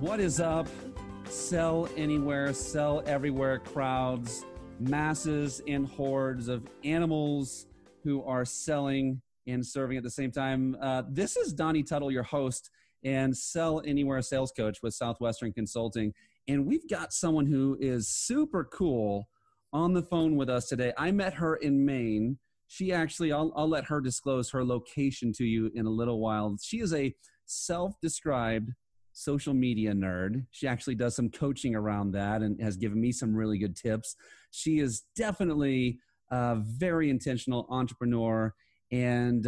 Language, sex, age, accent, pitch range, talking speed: English, male, 30-49, American, 115-150 Hz, 155 wpm